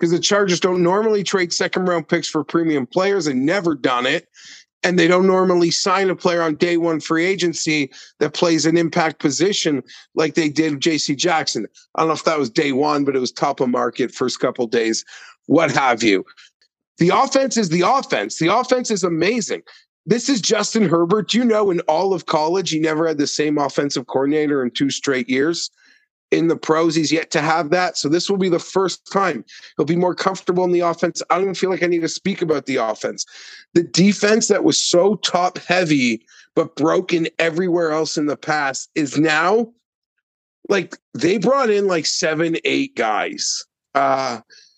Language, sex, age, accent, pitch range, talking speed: English, male, 40-59, American, 155-190 Hz, 200 wpm